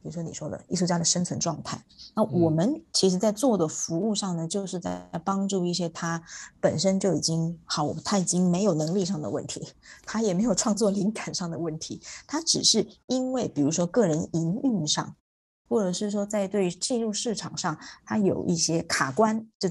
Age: 20-39